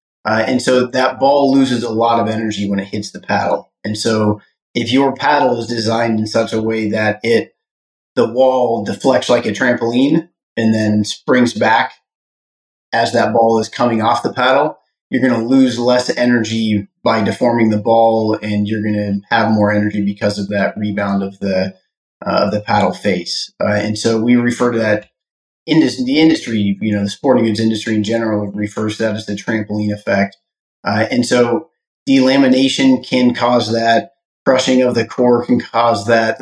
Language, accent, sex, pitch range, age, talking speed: English, American, male, 105-120 Hz, 30-49, 190 wpm